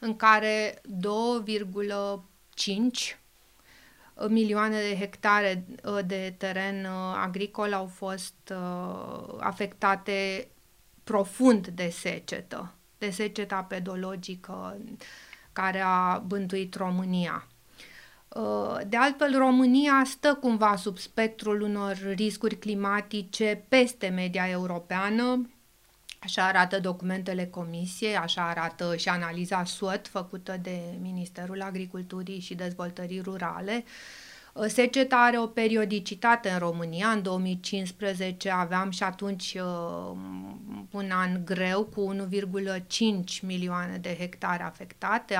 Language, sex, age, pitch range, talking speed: Romanian, female, 30-49, 185-215 Hz, 95 wpm